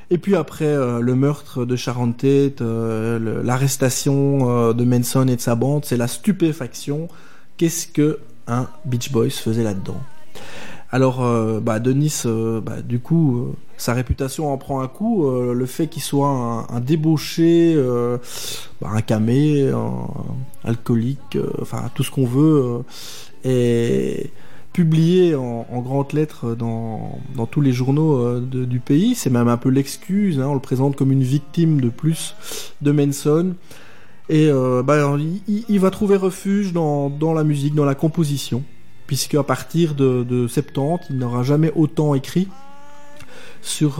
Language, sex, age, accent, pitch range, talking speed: French, male, 20-39, French, 125-155 Hz, 170 wpm